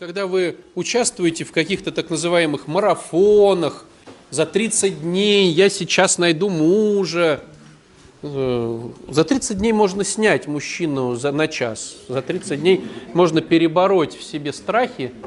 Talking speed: 125 wpm